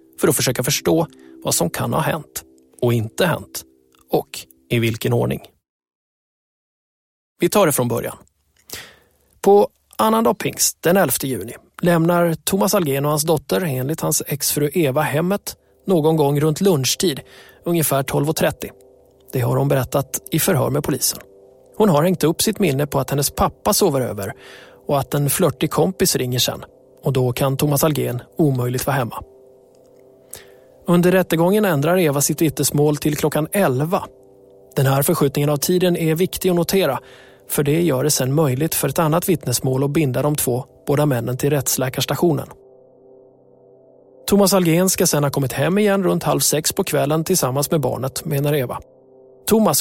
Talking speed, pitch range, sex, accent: 160 wpm, 130-170 Hz, male, native